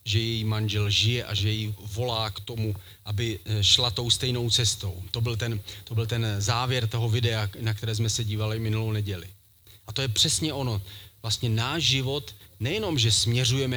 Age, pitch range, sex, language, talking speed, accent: 40-59, 105-125 Hz, male, Czech, 185 wpm, native